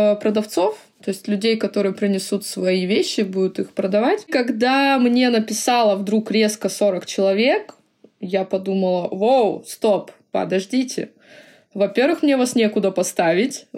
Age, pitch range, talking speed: 20-39, 185-220 Hz, 120 wpm